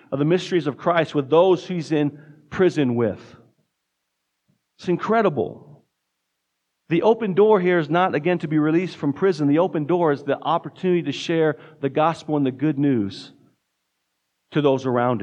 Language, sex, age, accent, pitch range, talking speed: English, male, 40-59, American, 150-185 Hz, 165 wpm